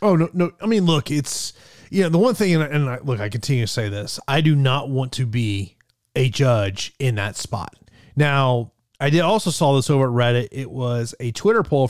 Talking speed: 225 wpm